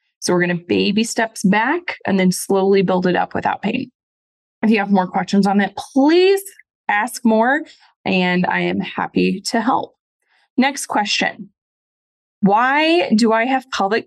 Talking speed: 160 wpm